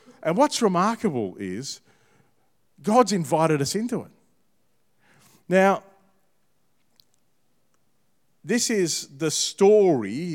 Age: 40-59